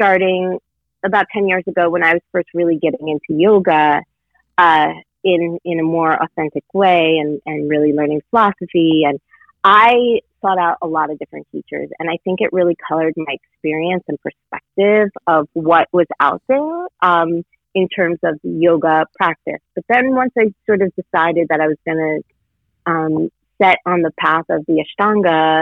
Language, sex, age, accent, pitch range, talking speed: English, female, 30-49, American, 160-185 Hz, 175 wpm